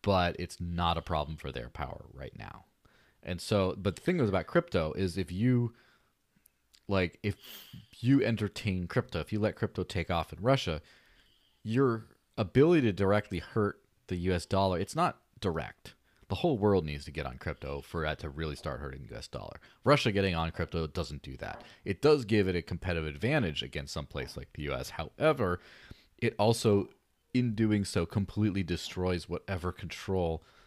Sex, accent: male, American